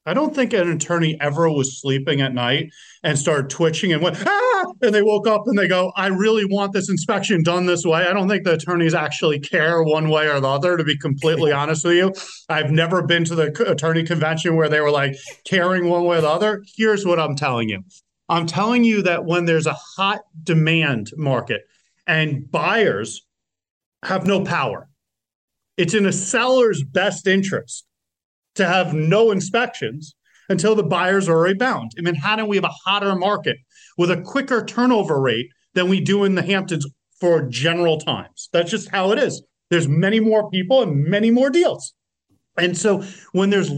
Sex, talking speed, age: male, 190 wpm, 30-49